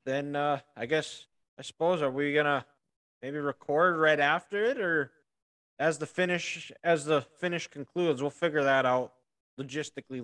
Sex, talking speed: male, 165 wpm